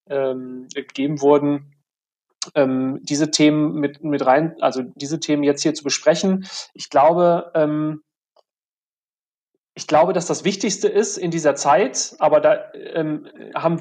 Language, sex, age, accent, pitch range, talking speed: German, male, 30-49, German, 145-160 Hz, 120 wpm